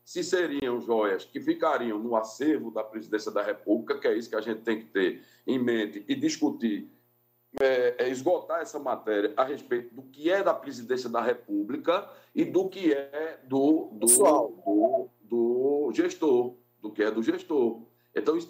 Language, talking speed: Portuguese, 145 wpm